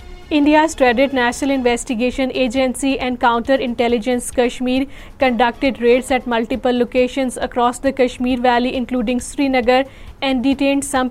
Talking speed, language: 120 wpm, Urdu